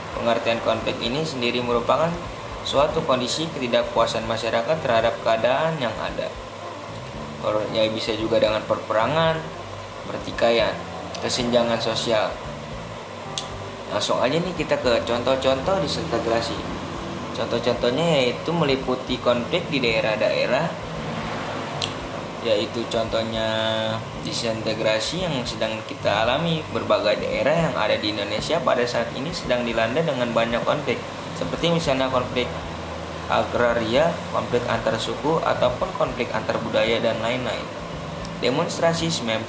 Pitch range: 110-130 Hz